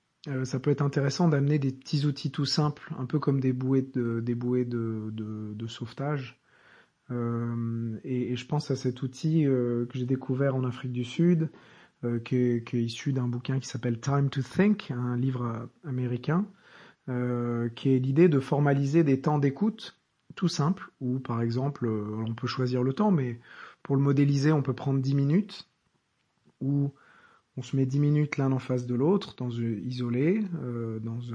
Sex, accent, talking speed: male, French, 175 wpm